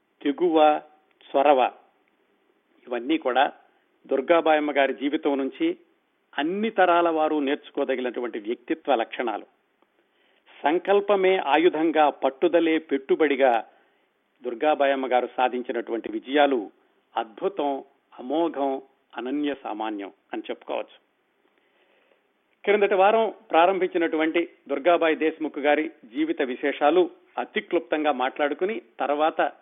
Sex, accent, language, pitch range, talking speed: male, native, Telugu, 145-200 Hz, 80 wpm